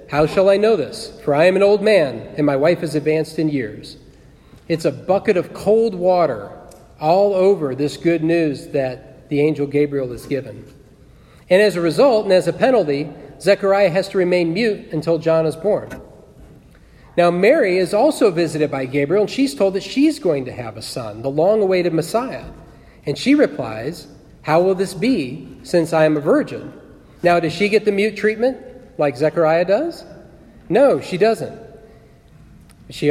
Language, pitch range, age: English, 150-210 Hz, 40-59